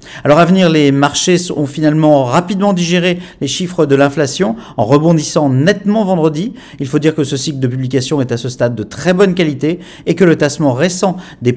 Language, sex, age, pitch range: French, male, 40-59, 135-175 Hz